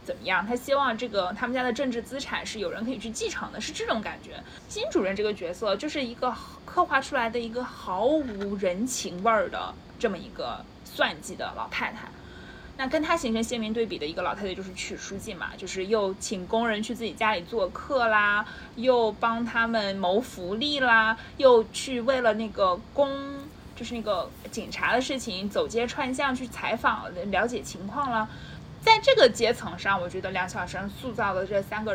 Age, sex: 20-39, female